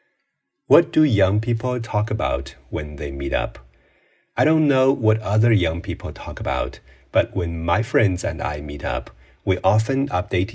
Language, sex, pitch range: Chinese, male, 85-115 Hz